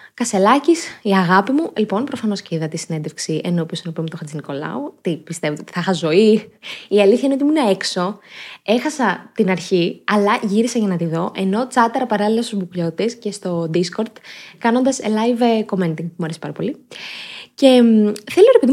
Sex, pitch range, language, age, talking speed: female, 180-265 Hz, Greek, 20-39, 170 wpm